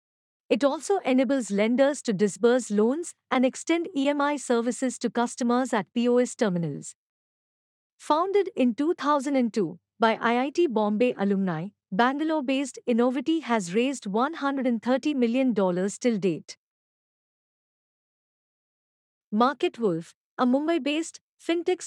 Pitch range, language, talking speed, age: 220-275 Hz, English, 95 wpm, 50-69